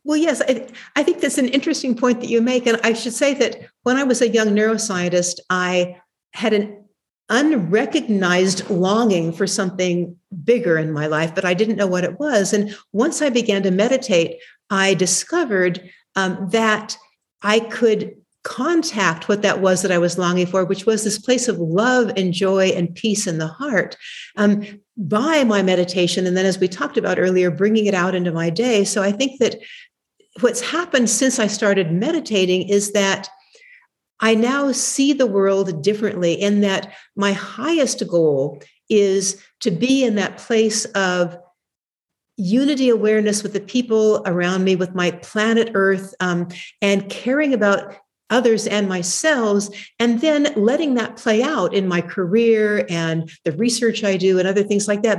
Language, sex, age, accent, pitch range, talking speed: English, female, 60-79, American, 185-240 Hz, 175 wpm